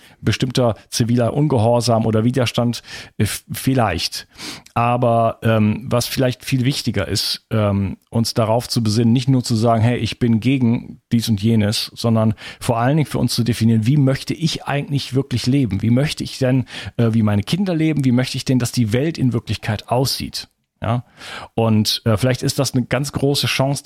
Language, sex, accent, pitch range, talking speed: German, male, German, 115-135 Hz, 180 wpm